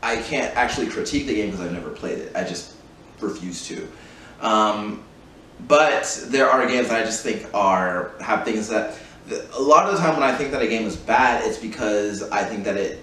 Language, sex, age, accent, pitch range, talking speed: English, male, 20-39, American, 95-120 Hz, 215 wpm